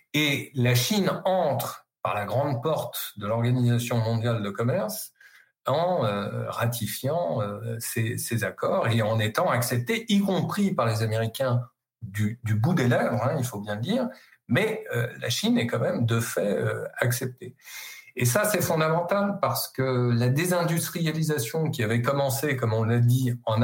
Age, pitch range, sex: 50-69, 115-150 Hz, male